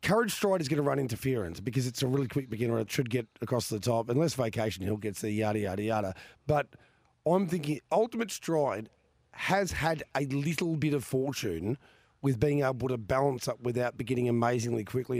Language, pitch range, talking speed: English, 110-145 Hz, 195 wpm